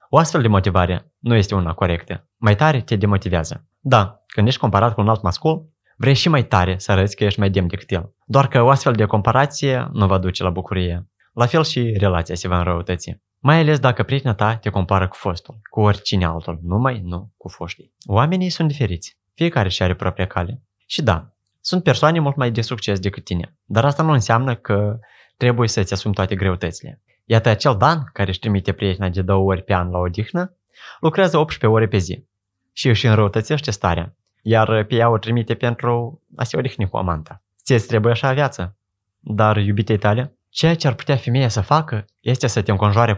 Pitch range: 95-125 Hz